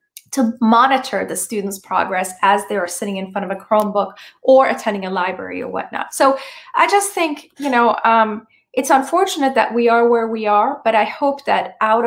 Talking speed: 200 wpm